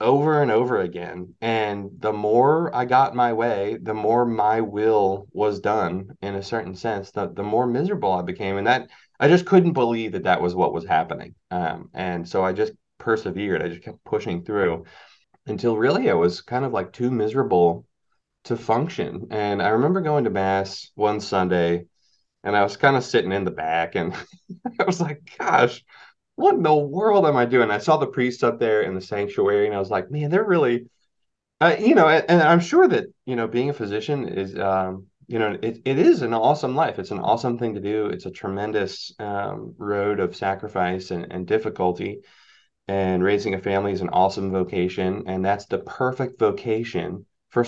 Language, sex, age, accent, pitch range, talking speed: English, male, 20-39, American, 95-130 Hz, 200 wpm